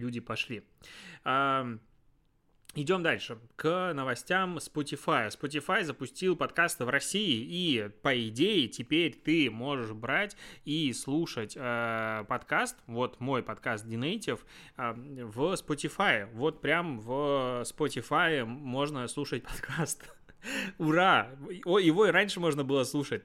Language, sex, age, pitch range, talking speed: Russian, male, 20-39, 120-160 Hz, 110 wpm